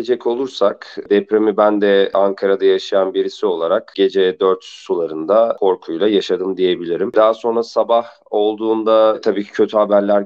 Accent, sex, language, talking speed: native, male, Turkish, 130 wpm